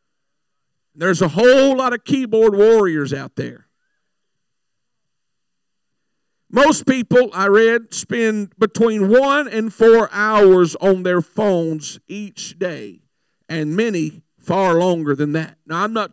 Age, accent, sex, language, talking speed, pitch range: 50-69, American, male, English, 125 wpm, 175-225 Hz